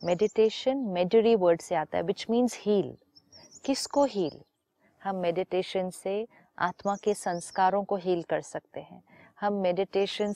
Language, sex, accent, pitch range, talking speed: Hindi, female, native, 185-250 Hz, 140 wpm